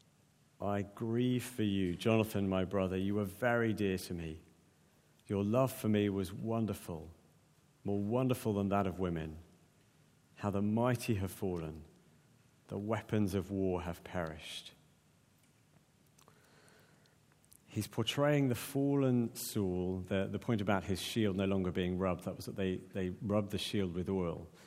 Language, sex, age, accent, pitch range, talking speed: English, male, 50-69, British, 95-120 Hz, 150 wpm